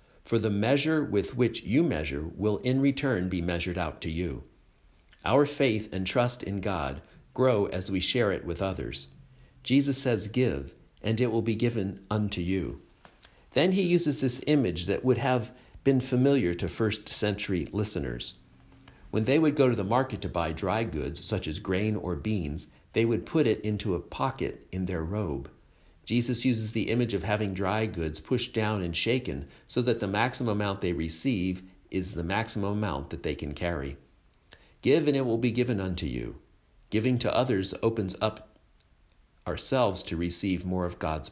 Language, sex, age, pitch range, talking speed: English, male, 50-69, 85-120 Hz, 180 wpm